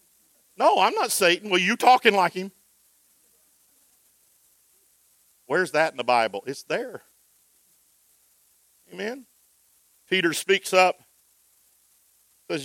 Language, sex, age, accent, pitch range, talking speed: English, male, 50-69, American, 130-170 Hz, 100 wpm